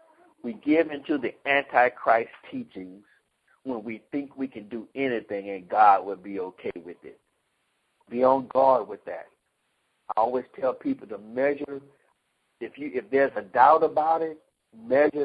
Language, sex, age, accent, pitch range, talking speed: English, male, 60-79, American, 120-155 Hz, 155 wpm